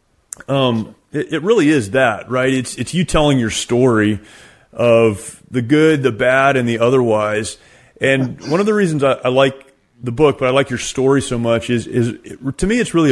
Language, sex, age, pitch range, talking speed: English, male, 30-49, 115-140 Hz, 200 wpm